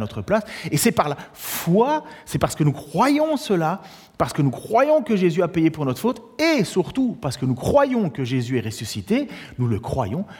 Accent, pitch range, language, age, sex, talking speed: French, 140-230 Hz, French, 40-59, male, 215 wpm